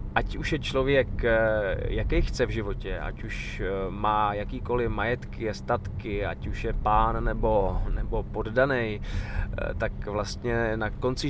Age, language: 20-39, Czech